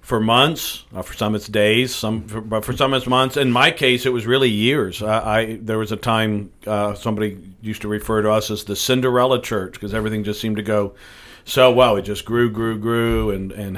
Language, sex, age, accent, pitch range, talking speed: English, male, 50-69, American, 105-120 Hz, 225 wpm